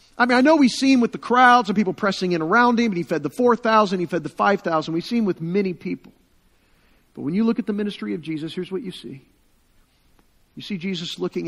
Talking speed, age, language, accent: 250 wpm, 50-69, English, American